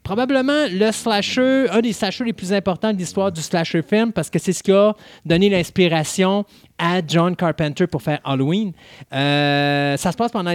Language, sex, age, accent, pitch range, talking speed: French, male, 30-49, Canadian, 140-185 Hz, 190 wpm